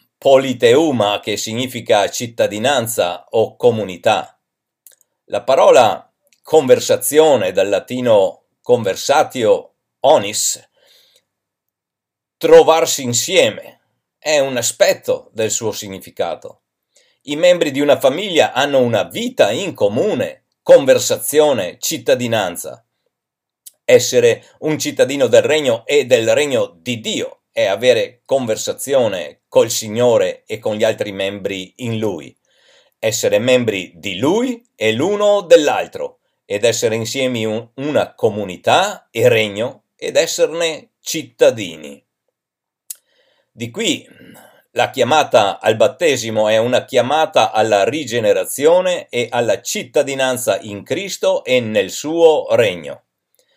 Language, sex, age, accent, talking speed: Italian, male, 50-69, native, 100 wpm